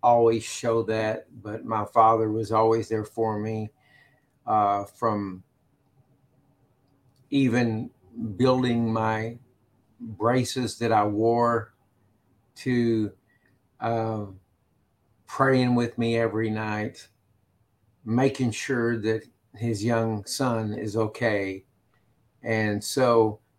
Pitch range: 110-125 Hz